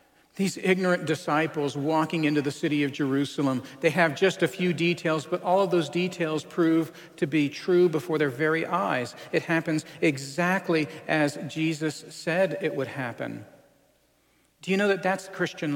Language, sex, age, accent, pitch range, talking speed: English, male, 50-69, American, 145-185 Hz, 165 wpm